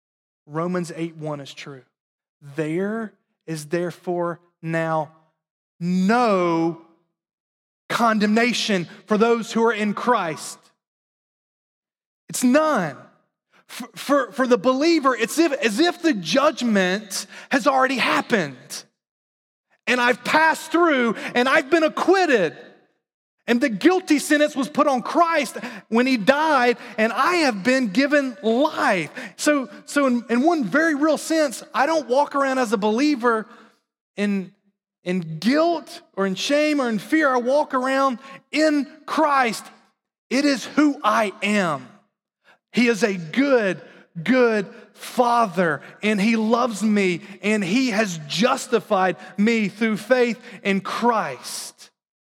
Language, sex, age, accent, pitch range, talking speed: English, male, 30-49, American, 195-275 Hz, 125 wpm